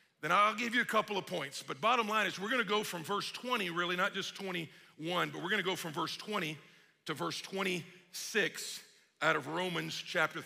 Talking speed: 205 wpm